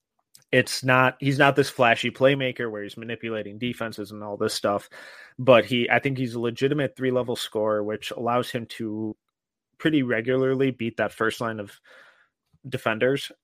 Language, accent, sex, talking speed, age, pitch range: English, American, male, 160 wpm, 30-49, 110-130 Hz